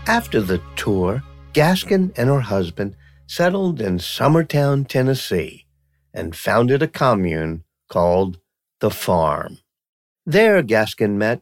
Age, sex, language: 50-69, male, English